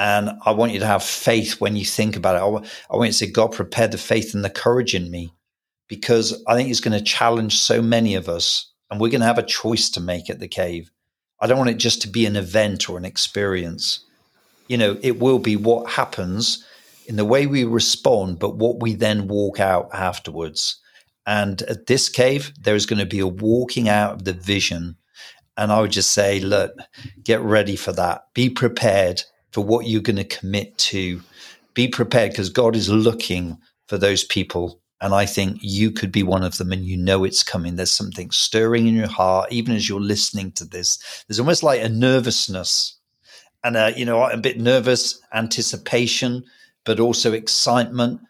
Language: English